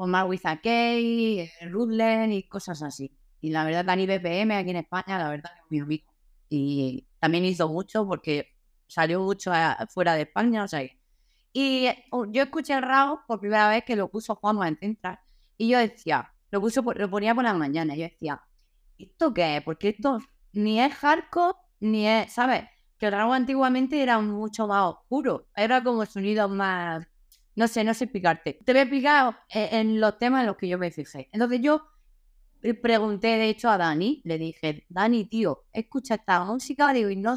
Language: Spanish